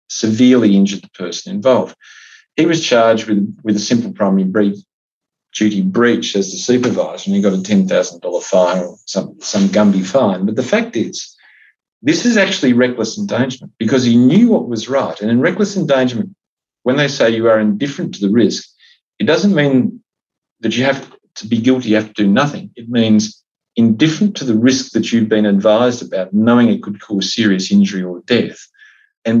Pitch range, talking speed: 100-130 Hz, 190 wpm